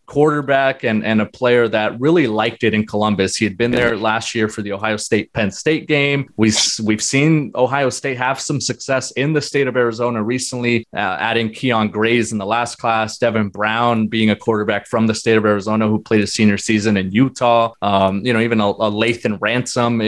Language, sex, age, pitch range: English, male, 20-39, 110-125 Hz